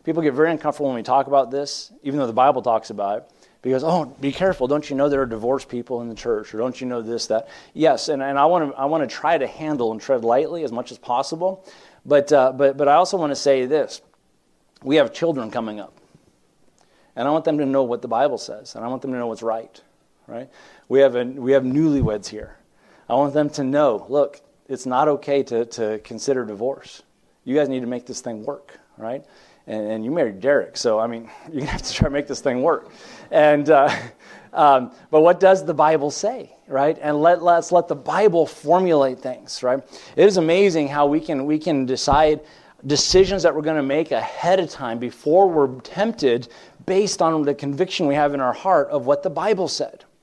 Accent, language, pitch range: American, English, 130-165 Hz